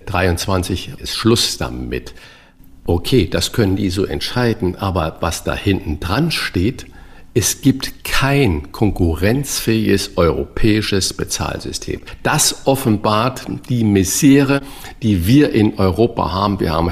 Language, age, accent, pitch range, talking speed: German, 50-69, German, 90-115 Hz, 115 wpm